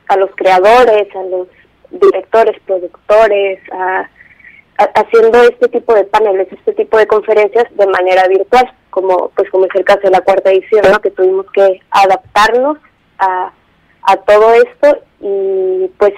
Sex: female